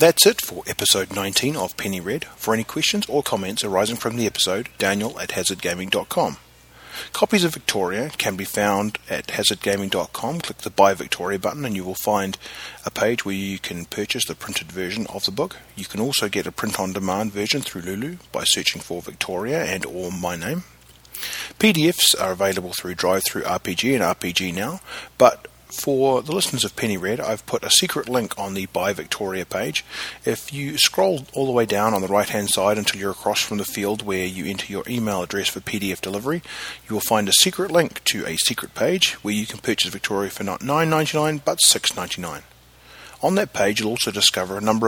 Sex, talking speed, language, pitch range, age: male, 195 wpm, English, 95-125 Hz, 40-59